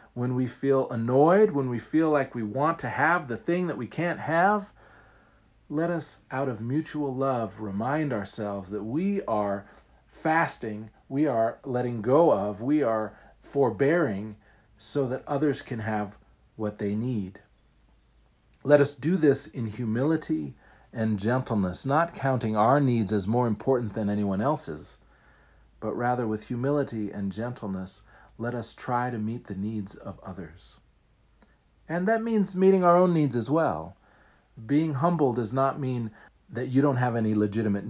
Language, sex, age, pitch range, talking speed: English, male, 50-69, 110-145 Hz, 155 wpm